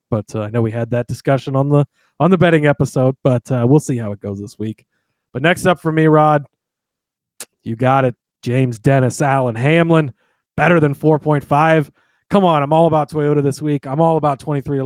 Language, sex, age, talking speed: English, male, 30-49, 210 wpm